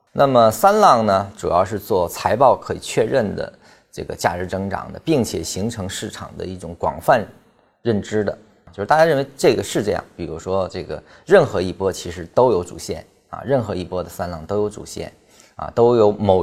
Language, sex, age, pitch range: Chinese, male, 20-39, 90-115 Hz